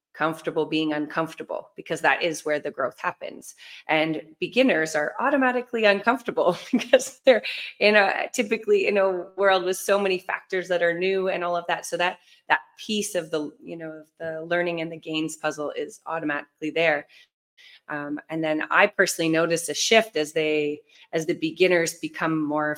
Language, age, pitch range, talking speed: English, 30-49, 150-180 Hz, 175 wpm